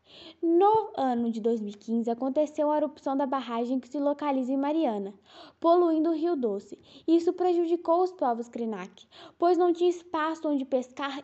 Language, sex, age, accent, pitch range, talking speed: Portuguese, female, 10-29, Brazilian, 260-335 Hz, 155 wpm